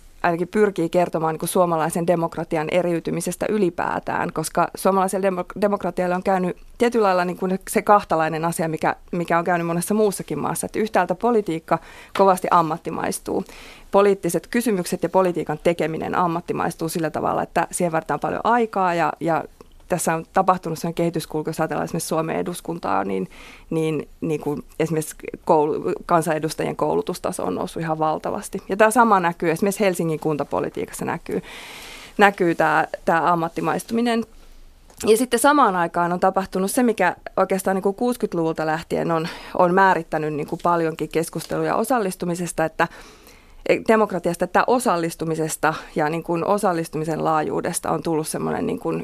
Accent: native